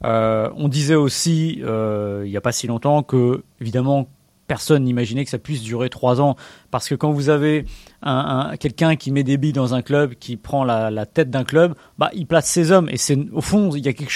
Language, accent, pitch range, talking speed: French, French, 125-170 Hz, 235 wpm